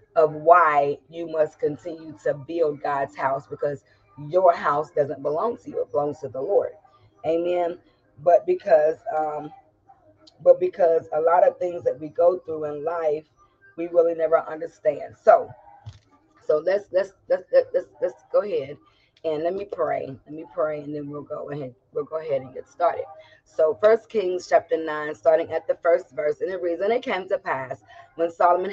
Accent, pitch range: American, 160-260 Hz